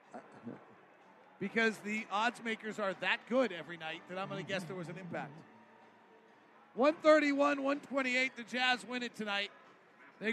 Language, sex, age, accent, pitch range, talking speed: English, male, 40-59, American, 190-230 Hz, 145 wpm